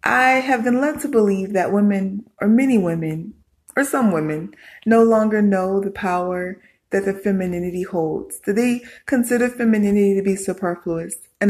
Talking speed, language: 155 wpm, English